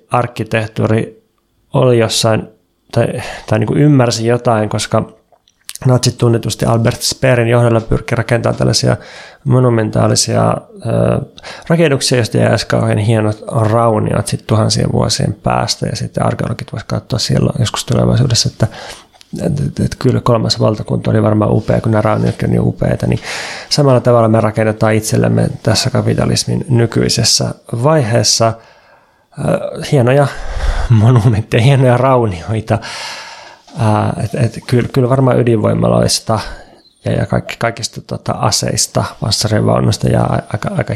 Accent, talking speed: native, 125 wpm